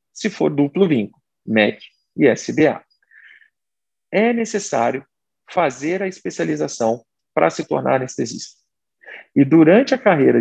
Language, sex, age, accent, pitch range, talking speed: Portuguese, male, 40-59, Brazilian, 130-180 Hz, 115 wpm